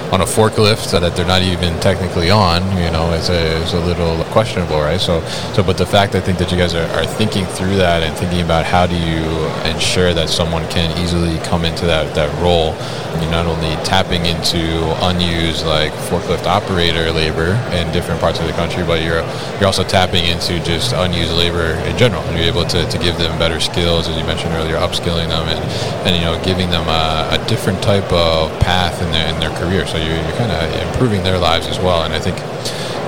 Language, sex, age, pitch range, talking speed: English, male, 20-39, 80-95 Hz, 225 wpm